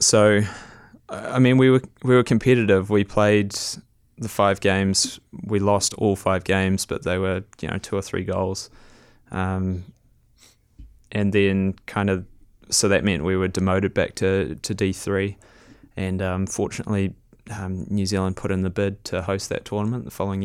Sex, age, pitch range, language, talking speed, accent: male, 20-39, 95-105 Hz, English, 170 wpm, Australian